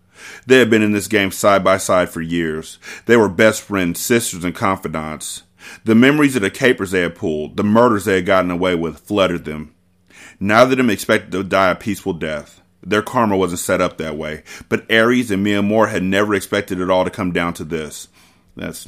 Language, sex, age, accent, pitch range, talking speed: English, male, 30-49, American, 90-105 Hz, 215 wpm